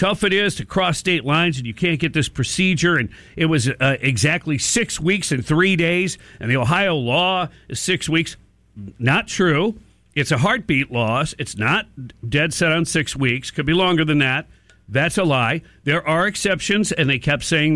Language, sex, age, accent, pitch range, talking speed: English, male, 50-69, American, 130-180 Hz, 195 wpm